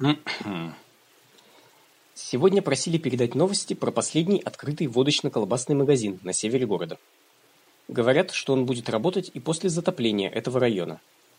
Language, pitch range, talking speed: Russian, 120-165 Hz, 115 wpm